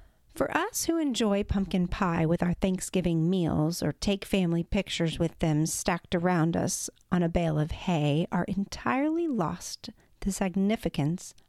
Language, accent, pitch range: English, American, 165-210 Hz